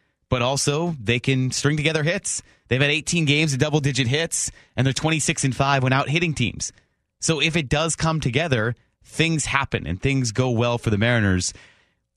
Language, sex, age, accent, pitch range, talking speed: English, male, 30-49, American, 115-145 Hz, 190 wpm